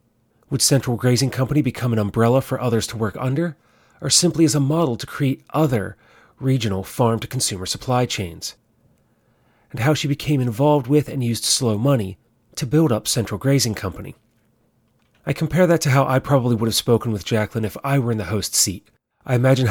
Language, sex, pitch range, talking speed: English, male, 115-140 Hz, 190 wpm